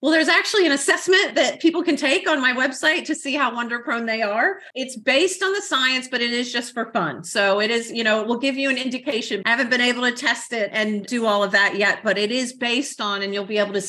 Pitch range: 200-265 Hz